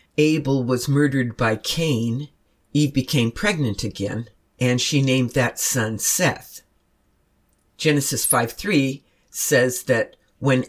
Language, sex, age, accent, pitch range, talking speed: English, female, 60-79, American, 115-145 Hz, 110 wpm